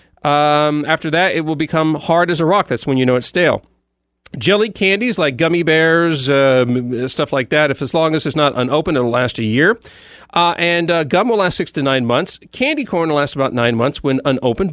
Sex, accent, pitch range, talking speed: male, American, 130-170 Hz, 225 wpm